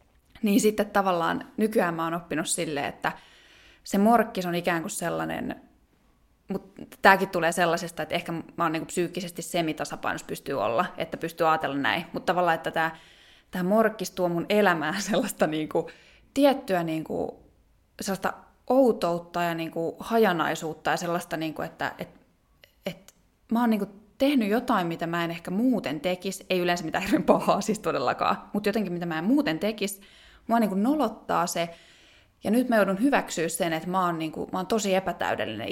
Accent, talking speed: native, 180 wpm